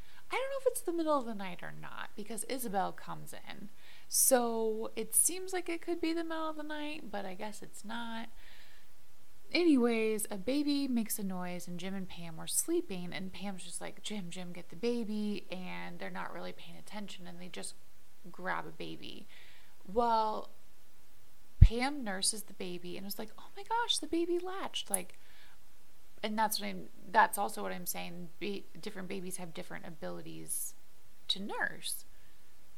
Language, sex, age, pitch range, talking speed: English, female, 20-39, 190-240 Hz, 180 wpm